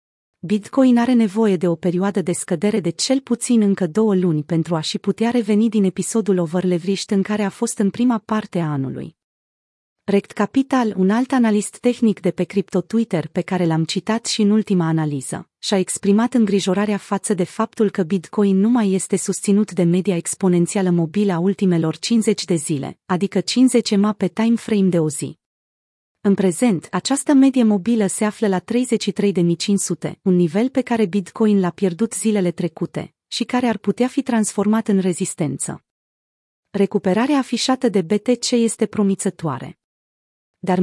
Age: 30-49